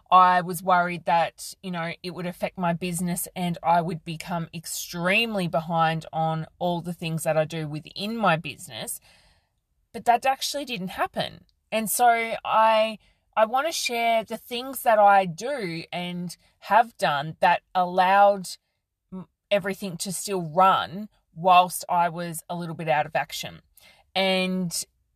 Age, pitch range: 20-39, 160-200 Hz